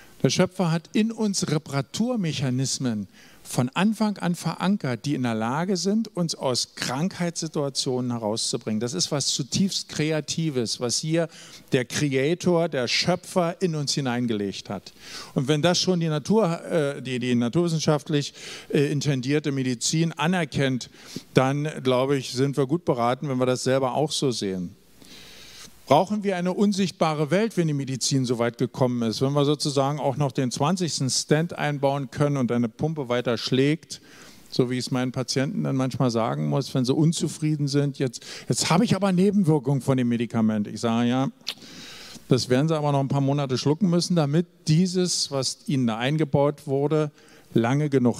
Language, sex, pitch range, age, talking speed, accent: German, male, 130-170 Hz, 50-69, 165 wpm, German